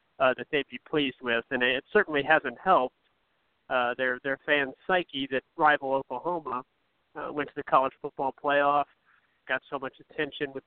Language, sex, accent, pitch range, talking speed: English, male, American, 130-150 Hz, 175 wpm